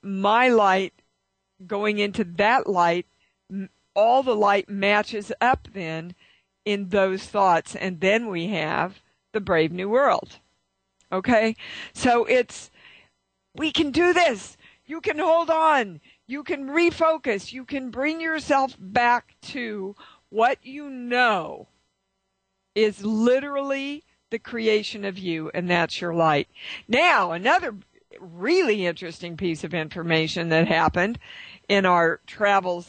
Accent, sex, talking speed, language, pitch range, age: American, female, 125 wpm, English, 180-240 Hz, 50-69